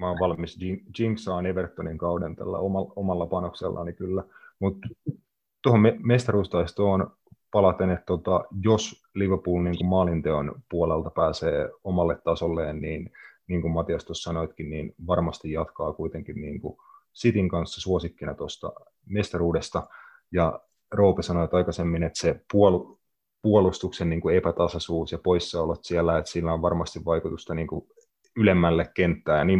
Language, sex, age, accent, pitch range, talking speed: Finnish, male, 30-49, native, 80-95 Hz, 130 wpm